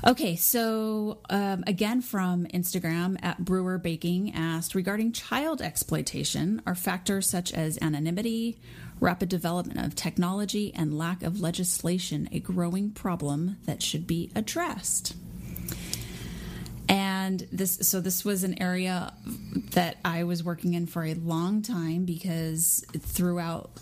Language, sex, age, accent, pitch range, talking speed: English, female, 30-49, American, 160-185 Hz, 130 wpm